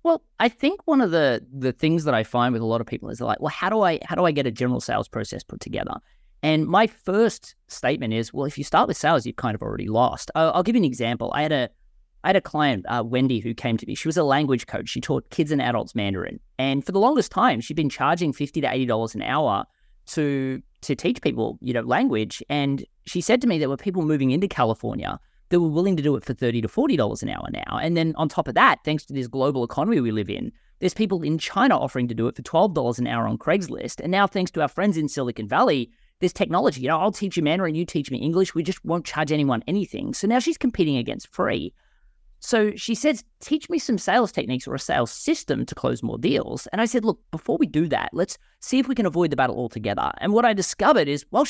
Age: 20-39